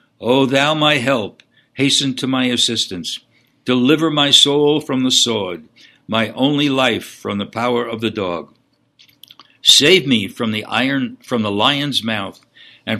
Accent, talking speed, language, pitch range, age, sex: American, 150 wpm, English, 115-150 Hz, 60-79, male